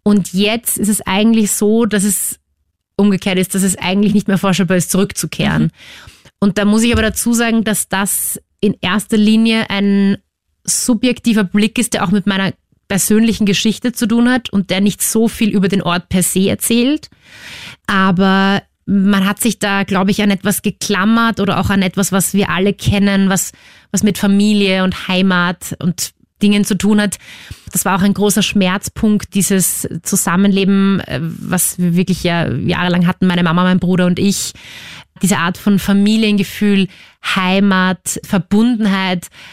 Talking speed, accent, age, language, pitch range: 165 wpm, German, 20-39, German, 185-205 Hz